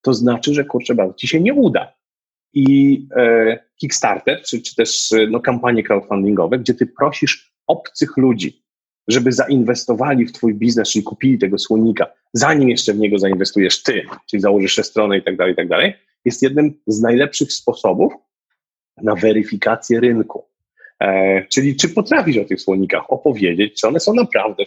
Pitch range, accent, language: 110-140 Hz, native, Polish